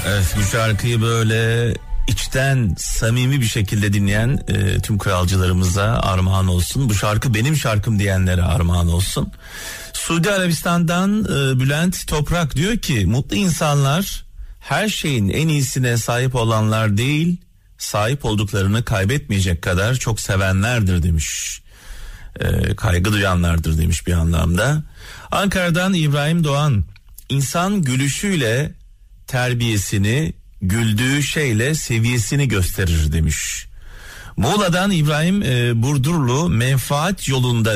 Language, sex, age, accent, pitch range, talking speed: Turkish, male, 40-59, native, 95-130 Hz, 105 wpm